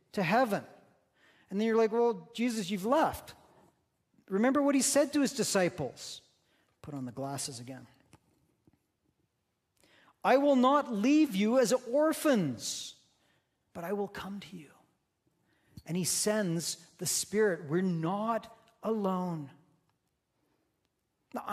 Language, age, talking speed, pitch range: English, 40-59, 125 wpm, 145-200 Hz